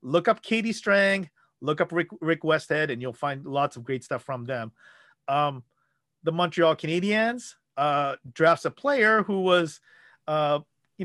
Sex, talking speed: male, 165 wpm